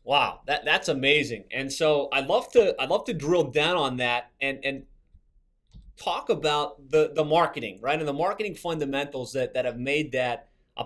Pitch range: 135-170 Hz